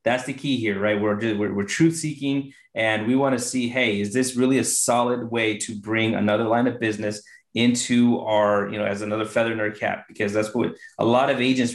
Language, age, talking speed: English, 30-49, 225 wpm